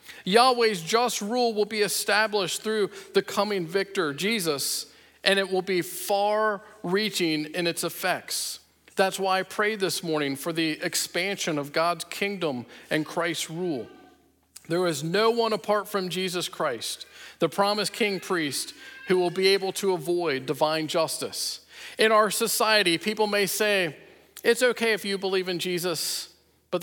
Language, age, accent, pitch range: English, 50-69, American, 155-200 Hz